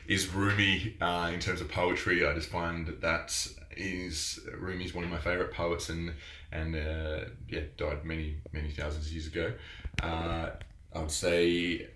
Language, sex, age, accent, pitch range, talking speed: English, male, 20-39, Australian, 80-90 Hz, 170 wpm